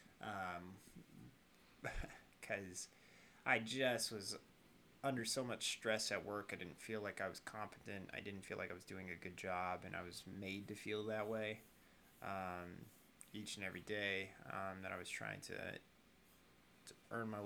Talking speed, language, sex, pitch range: 175 wpm, English, male, 95-125 Hz